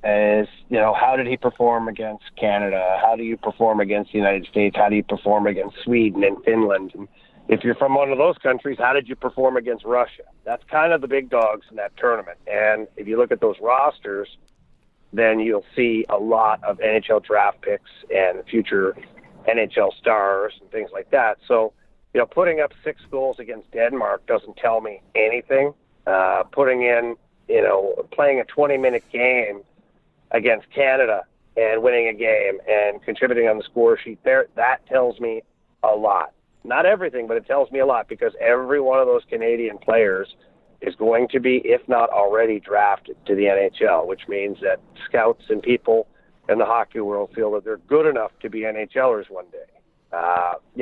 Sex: male